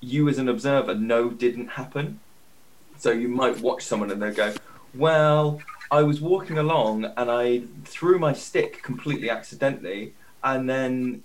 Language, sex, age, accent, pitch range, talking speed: English, male, 20-39, British, 115-145 Hz, 155 wpm